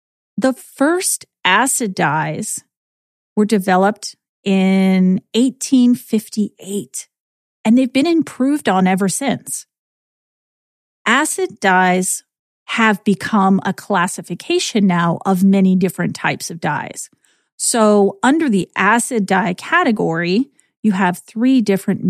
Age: 40-59